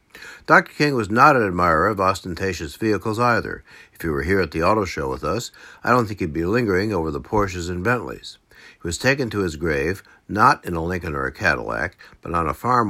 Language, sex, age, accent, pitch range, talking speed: English, male, 60-79, American, 85-115 Hz, 225 wpm